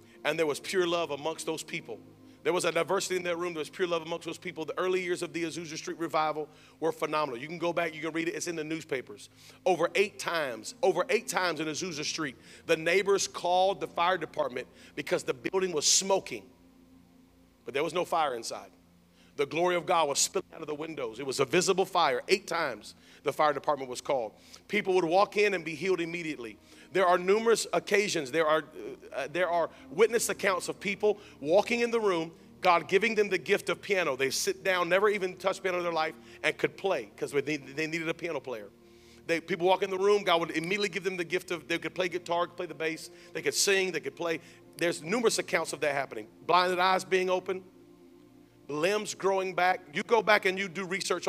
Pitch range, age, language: 160-195 Hz, 40-59, English